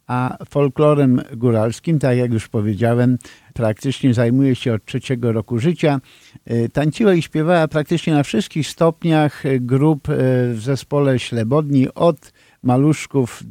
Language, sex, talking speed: Polish, male, 120 wpm